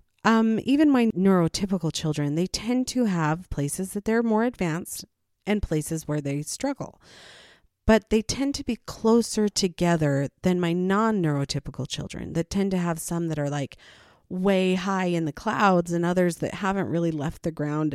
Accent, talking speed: American, 170 wpm